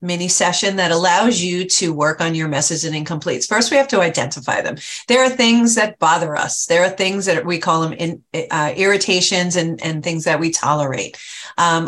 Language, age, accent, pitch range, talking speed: English, 40-59, American, 165-205 Hz, 205 wpm